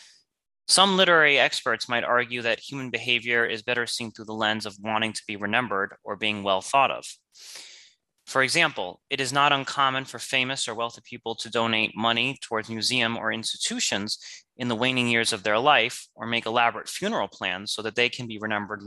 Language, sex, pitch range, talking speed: English, male, 105-130 Hz, 190 wpm